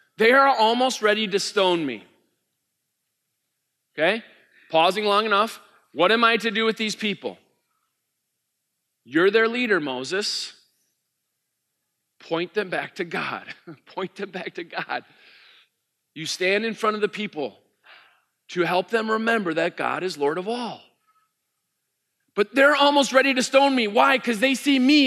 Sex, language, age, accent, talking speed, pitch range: male, English, 40-59, American, 150 wpm, 180-250 Hz